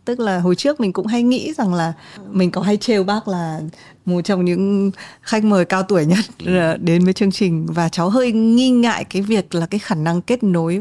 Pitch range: 170-215 Hz